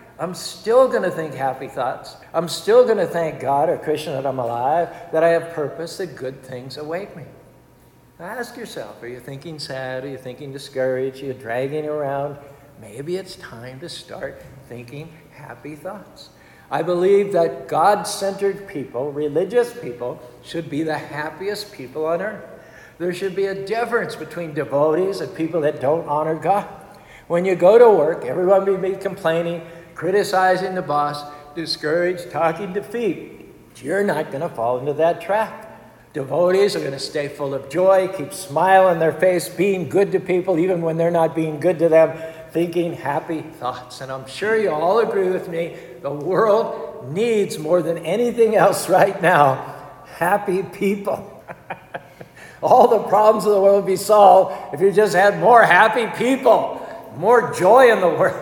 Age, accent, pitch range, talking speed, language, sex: 60-79, American, 145-195 Hz, 170 wpm, English, male